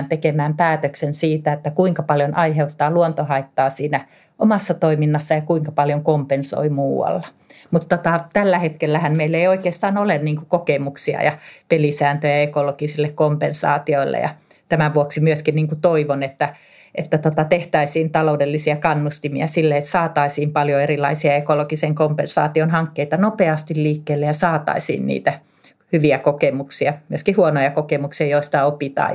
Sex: female